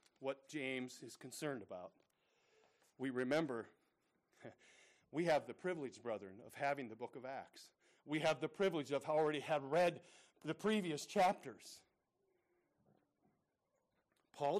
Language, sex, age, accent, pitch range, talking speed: English, male, 40-59, American, 140-200 Hz, 125 wpm